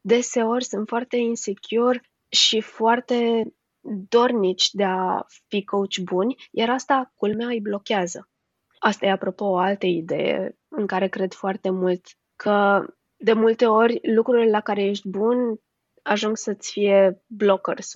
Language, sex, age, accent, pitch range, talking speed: Romanian, female, 20-39, native, 190-230 Hz, 135 wpm